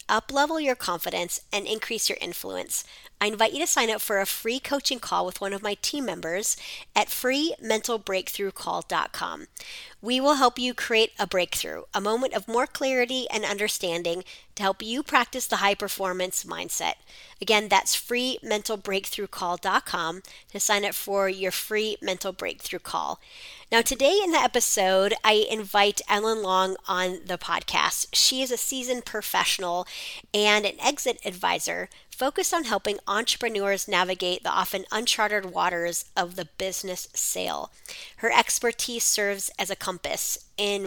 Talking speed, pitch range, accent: 145 wpm, 190-240 Hz, American